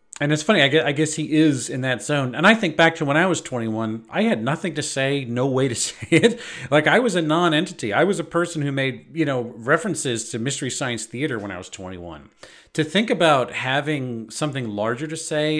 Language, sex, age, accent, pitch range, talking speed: English, male, 40-59, American, 125-180 Hz, 225 wpm